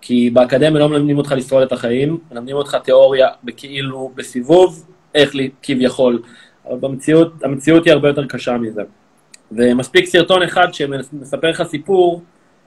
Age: 30-49